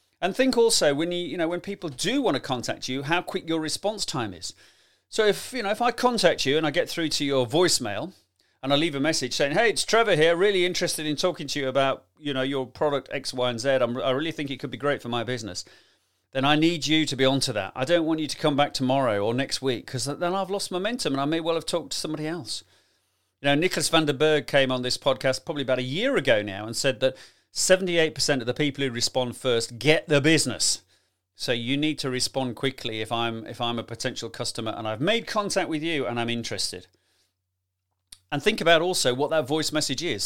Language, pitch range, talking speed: English, 120-165 Hz, 245 wpm